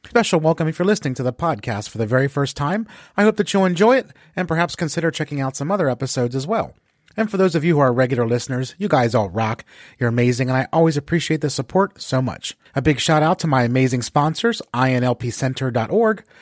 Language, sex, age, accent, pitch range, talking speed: English, male, 30-49, American, 125-180 Hz, 225 wpm